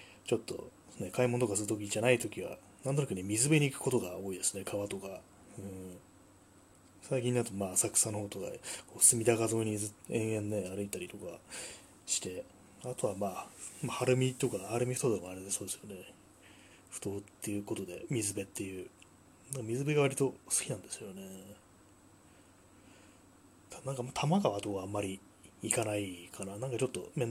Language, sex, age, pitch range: Japanese, male, 20-39, 95-120 Hz